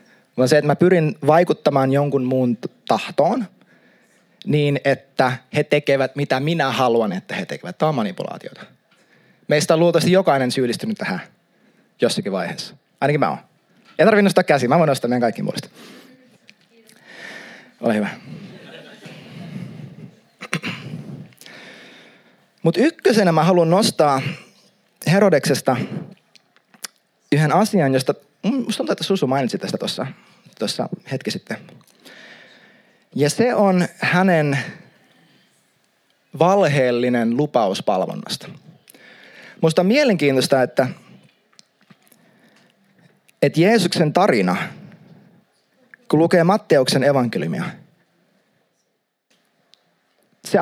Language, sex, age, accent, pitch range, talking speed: Finnish, male, 30-49, native, 145-215 Hz, 95 wpm